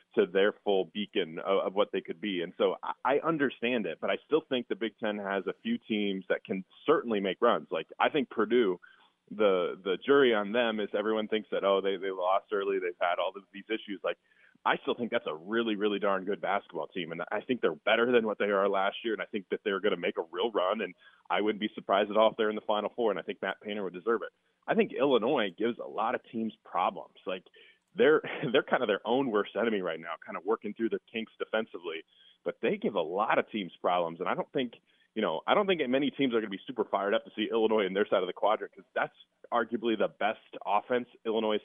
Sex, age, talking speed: male, 20-39, 260 wpm